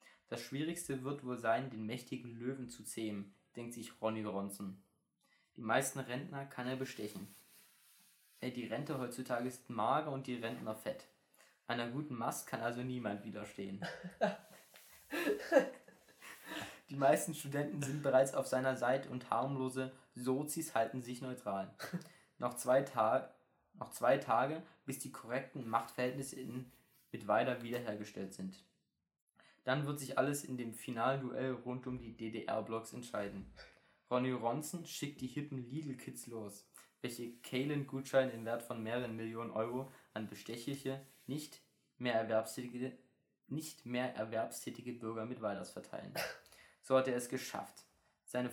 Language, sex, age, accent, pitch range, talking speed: German, male, 20-39, German, 115-130 Hz, 135 wpm